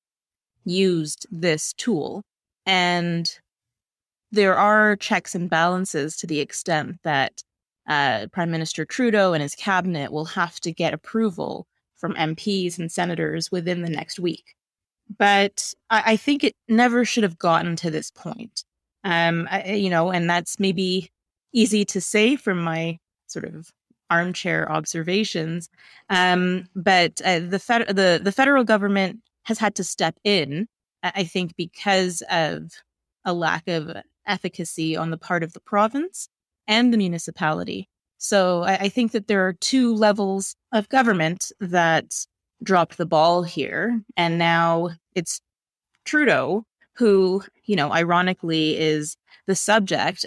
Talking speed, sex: 140 wpm, female